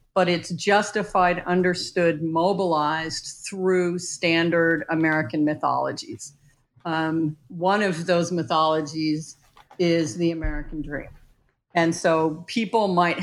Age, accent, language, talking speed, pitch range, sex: 50-69, American, English, 100 wpm, 160-180 Hz, female